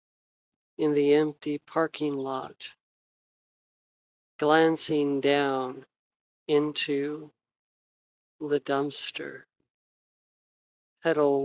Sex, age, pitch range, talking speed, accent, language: male, 50-69, 140-155 Hz, 60 wpm, American, English